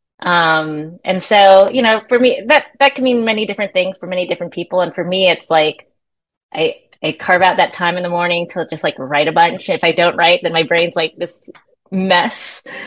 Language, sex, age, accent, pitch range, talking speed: English, female, 20-39, American, 165-220 Hz, 225 wpm